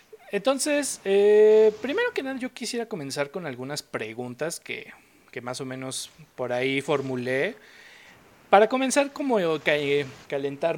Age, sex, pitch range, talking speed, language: 30-49, male, 140-215 Hz, 130 wpm, Spanish